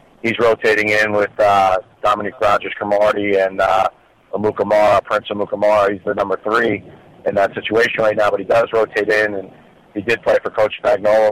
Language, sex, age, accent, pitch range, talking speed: English, male, 40-59, American, 105-120 Hz, 175 wpm